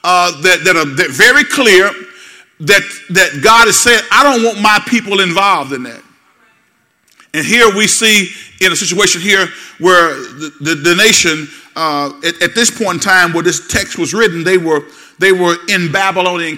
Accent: American